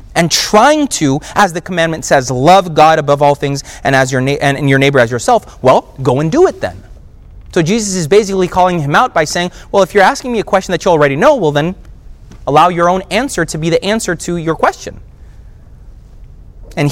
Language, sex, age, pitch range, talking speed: English, male, 30-49, 145-215 Hz, 210 wpm